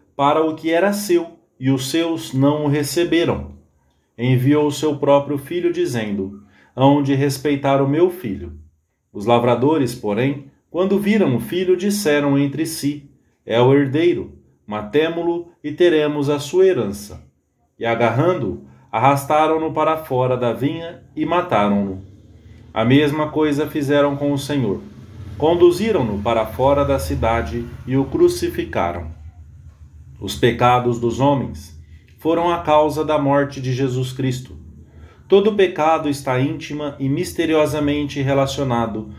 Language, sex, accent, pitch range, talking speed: English, male, Brazilian, 115-155 Hz, 130 wpm